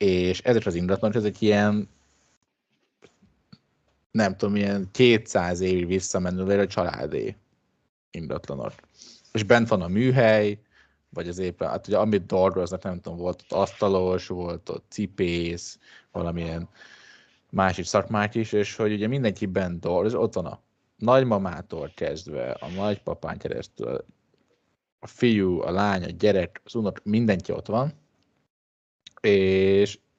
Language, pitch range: Hungarian, 90-110 Hz